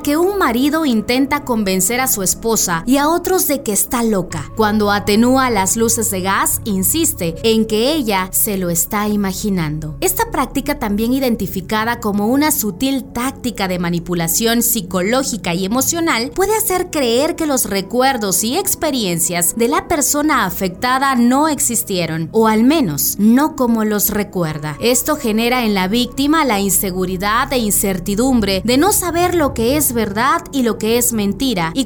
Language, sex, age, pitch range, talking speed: Spanish, female, 30-49, 205-275 Hz, 160 wpm